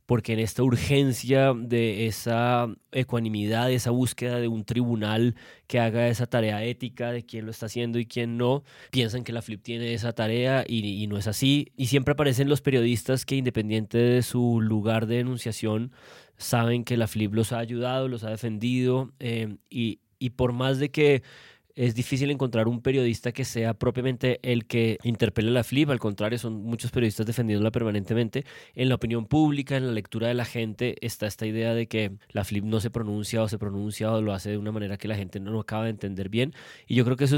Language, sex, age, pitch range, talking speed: Spanish, male, 20-39, 110-130 Hz, 210 wpm